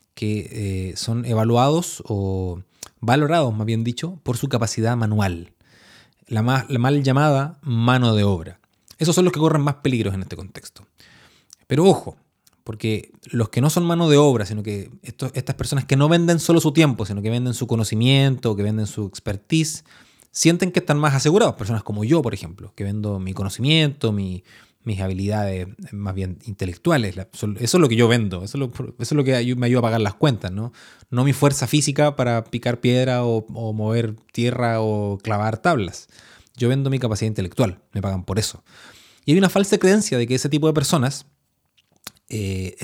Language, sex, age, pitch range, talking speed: Spanish, male, 30-49, 105-140 Hz, 185 wpm